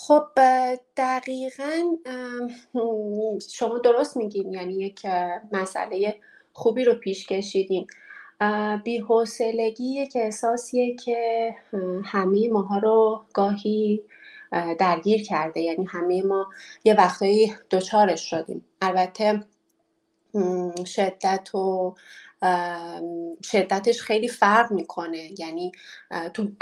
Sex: female